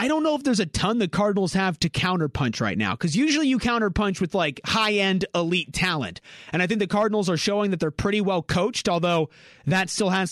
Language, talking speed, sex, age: English, 225 wpm, male, 30-49